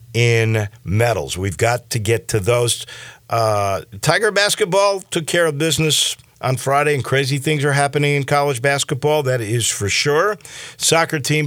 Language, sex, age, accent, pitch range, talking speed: English, male, 50-69, American, 100-140 Hz, 160 wpm